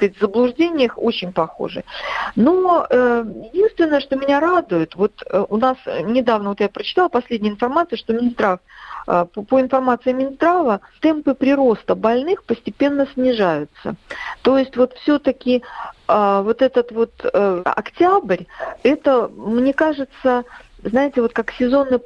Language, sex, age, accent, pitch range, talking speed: Russian, female, 50-69, native, 190-260 Hz, 130 wpm